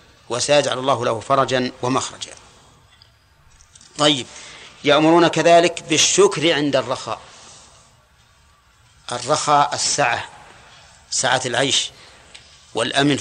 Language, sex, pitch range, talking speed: Arabic, male, 130-155 Hz, 75 wpm